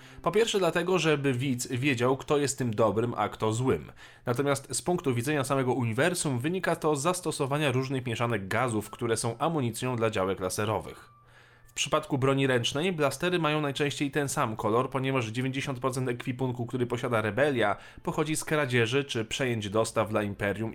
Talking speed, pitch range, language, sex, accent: 160 wpm, 110-140 Hz, Polish, male, native